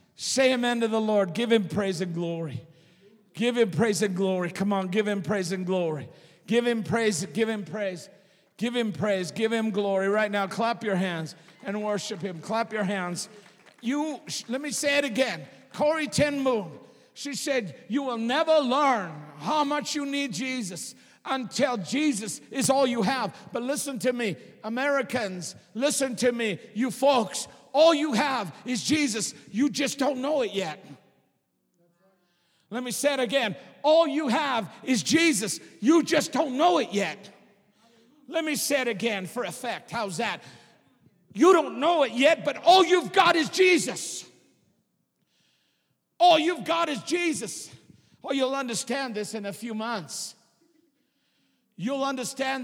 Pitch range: 200-275 Hz